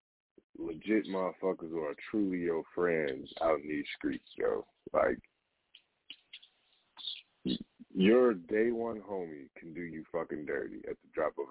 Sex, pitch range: male, 85-110 Hz